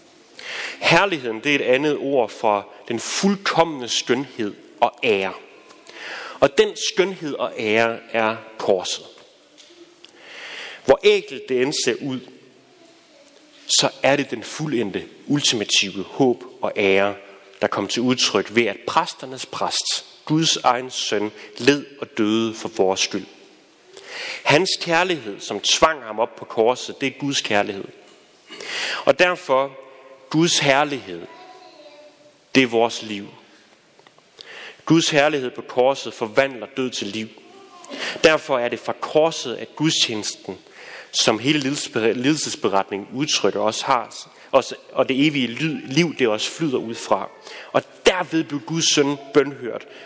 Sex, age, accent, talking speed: male, 30-49, native, 130 wpm